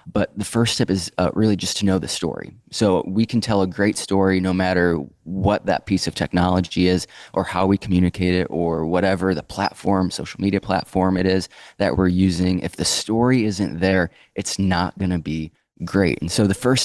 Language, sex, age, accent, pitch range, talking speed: English, male, 20-39, American, 90-105 Hz, 210 wpm